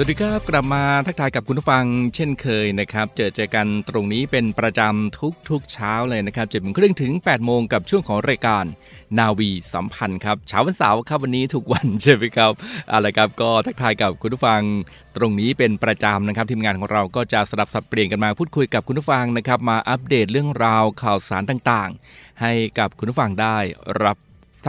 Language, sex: Thai, male